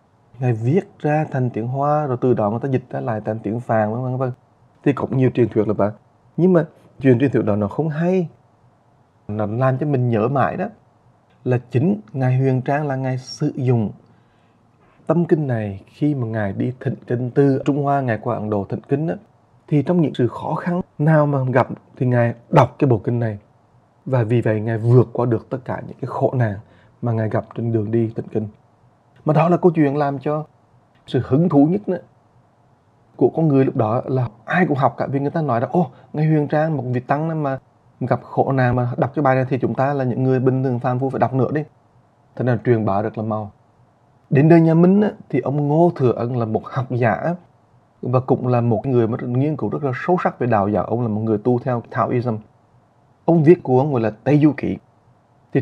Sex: male